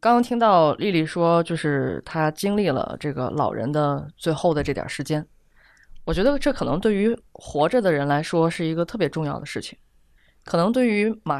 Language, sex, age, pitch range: Chinese, female, 20-39, 145-200 Hz